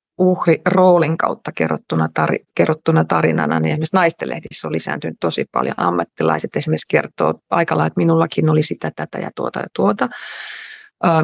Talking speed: 145 wpm